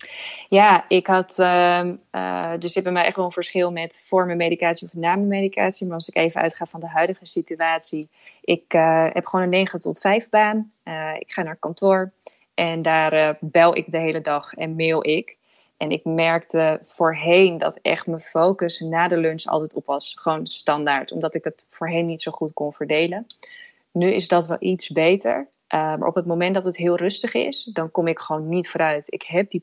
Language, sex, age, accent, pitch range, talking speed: Dutch, female, 20-39, Dutch, 165-190 Hz, 210 wpm